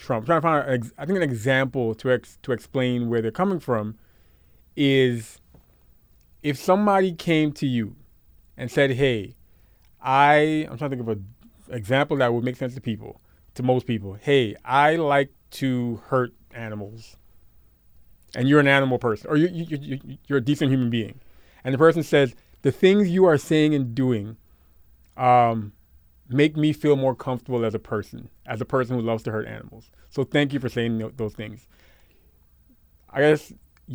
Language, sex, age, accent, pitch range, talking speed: English, male, 30-49, American, 110-140 Hz, 180 wpm